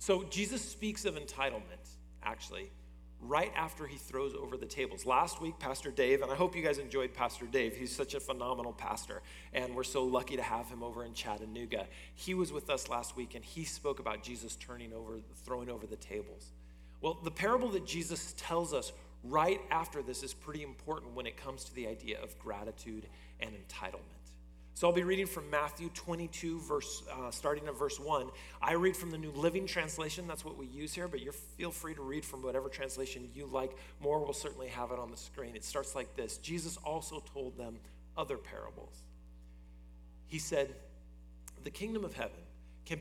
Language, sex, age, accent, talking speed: English, male, 40-59, American, 195 wpm